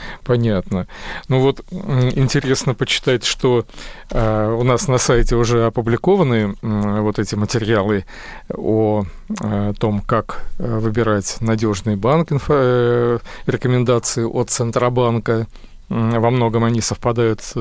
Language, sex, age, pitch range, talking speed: Russian, male, 40-59, 110-140 Hz, 95 wpm